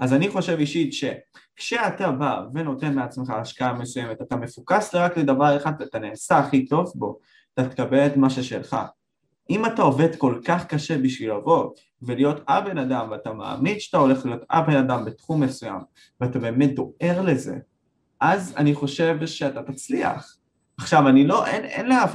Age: 20-39